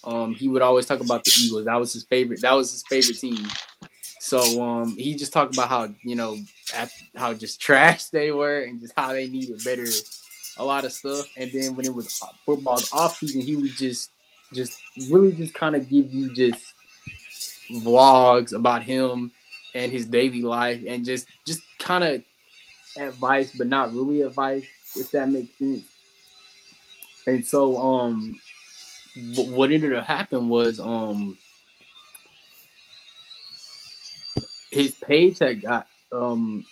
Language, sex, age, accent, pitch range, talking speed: English, male, 10-29, American, 120-140 Hz, 155 wpm